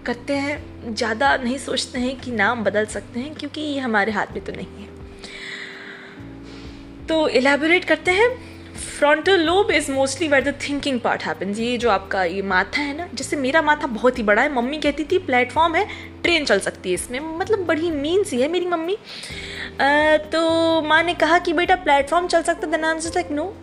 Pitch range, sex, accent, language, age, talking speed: 235-330 Hz, female, native, Hindi, 20-39, 190 wpm